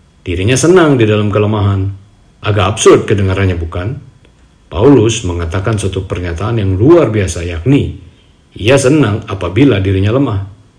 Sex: male